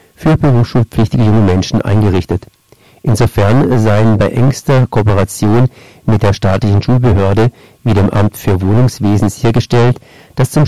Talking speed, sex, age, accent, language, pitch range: 125 wpm, male, 50-69, German, German, 100-120 Hz